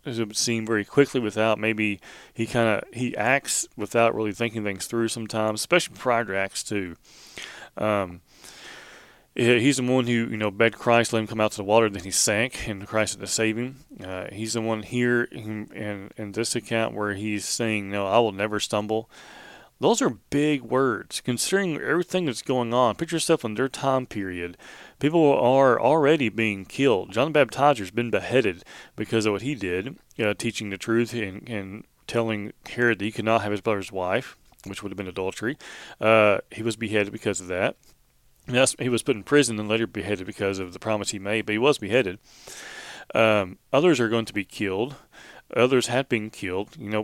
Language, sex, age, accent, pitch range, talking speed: English, male, 30-49, American, 105-120 Hz, 200 wpm